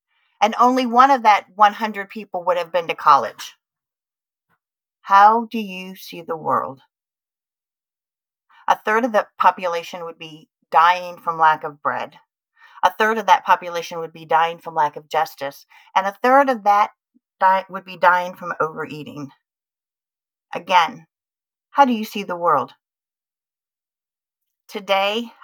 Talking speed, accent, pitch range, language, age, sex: 140 wpm, American, 175-230 Hz, English, 40-59, female